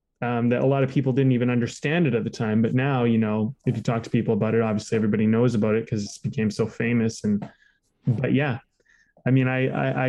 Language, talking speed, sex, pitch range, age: English, 250 wpm, male, 125-155 Hz, 20-39